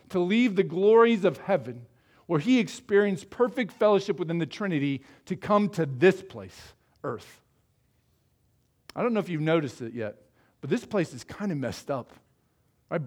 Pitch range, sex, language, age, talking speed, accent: 145-205 Hz, male, English, 50-69, 170 wpm, American